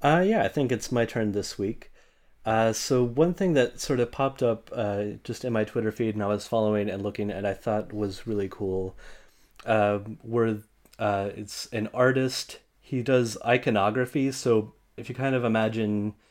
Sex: male